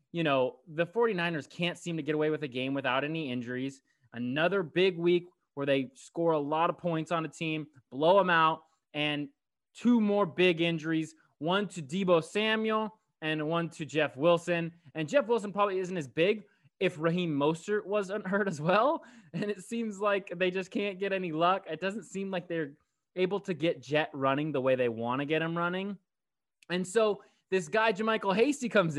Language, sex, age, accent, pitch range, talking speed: English, male, 20-39, American, 150-195 Hz, 195 wpm